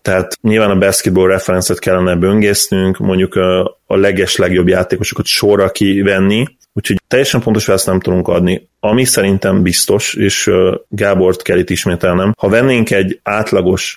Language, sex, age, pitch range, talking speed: Hungarian, male, 30-49, 90-100 Hz, 145 wpm